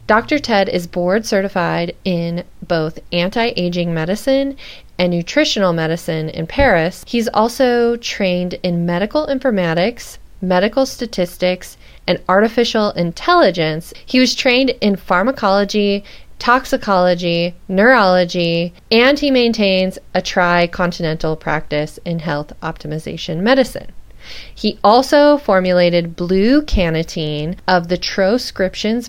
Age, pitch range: 20-39, 170-215 Hz